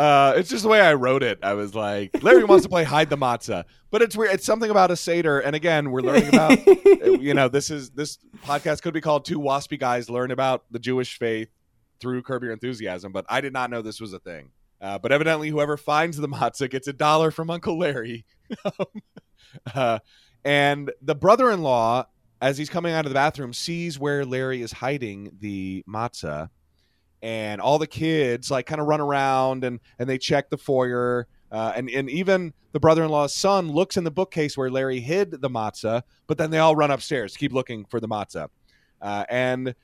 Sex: male